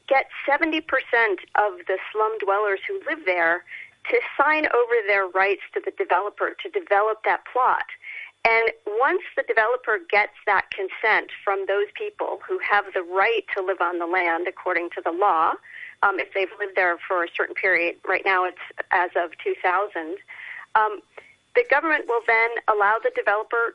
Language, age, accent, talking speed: English, 40-59, American, 165 wpm